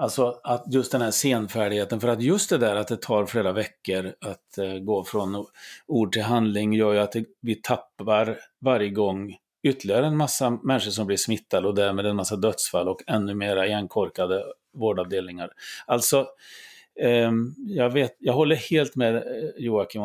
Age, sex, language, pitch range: 30-49, male, Swedish, 100-120 Hz